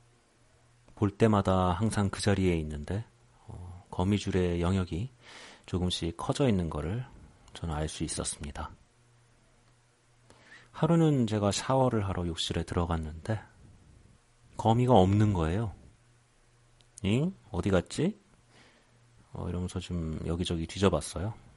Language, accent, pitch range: Korean, native, 90-120 Hz